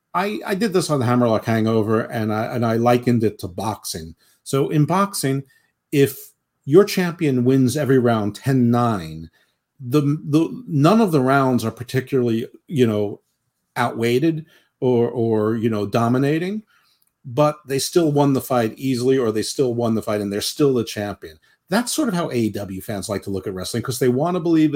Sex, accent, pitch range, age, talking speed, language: male, American, 110-135 Hz, 50-69, 175 wpm, English